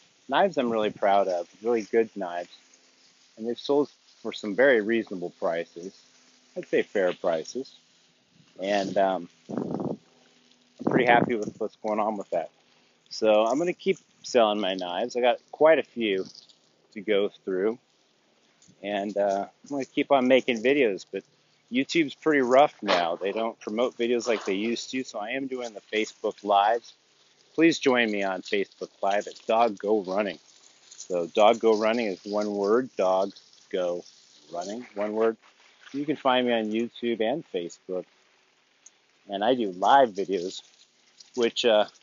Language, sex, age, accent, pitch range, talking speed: English, male, 30-49, American, 100-130 Hz, 160 wpm